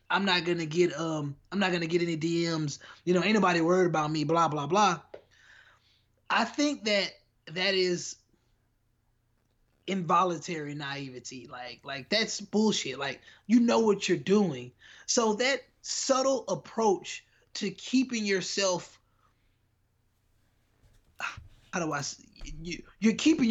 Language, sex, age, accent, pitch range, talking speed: English, male, 20-39, American, 150-195 Hz, 130 wpm